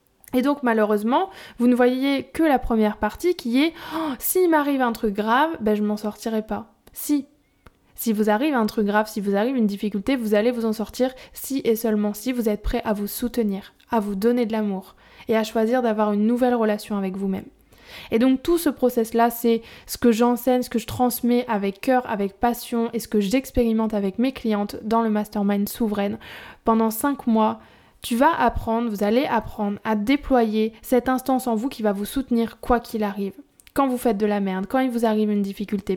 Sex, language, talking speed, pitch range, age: female, French, 215 wpm, 215-255 Hz, 20-39